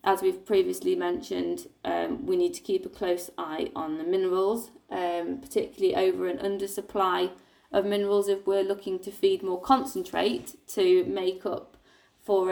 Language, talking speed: English, 165 wpm